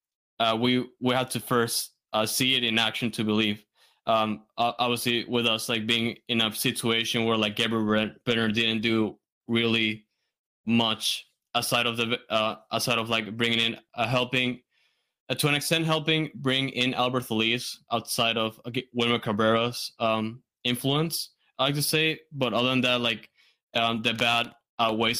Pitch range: 115-130 Hz